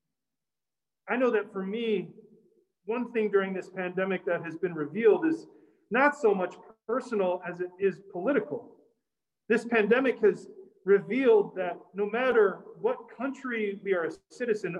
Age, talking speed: 40-59, 145 wpm